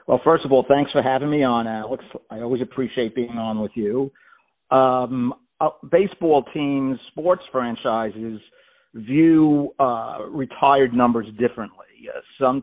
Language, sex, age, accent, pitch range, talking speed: English, male, 50-69, American, 120-140 Hz, 145 wpm